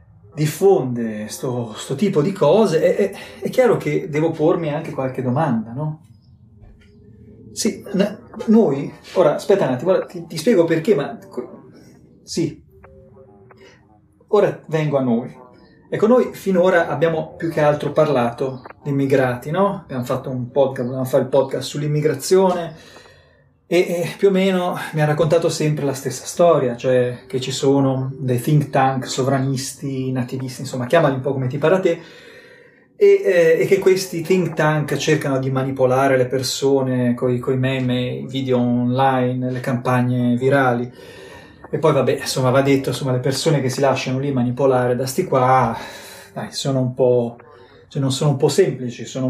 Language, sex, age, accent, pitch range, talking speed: Italian, male, 30-49, native, 125-165 Hz, 160 wpm